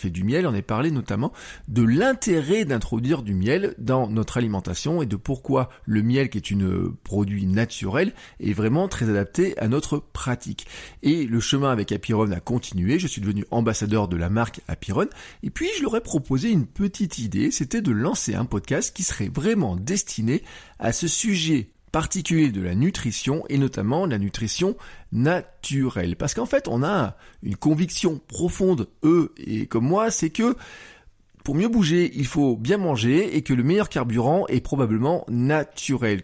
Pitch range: 110-155 Hz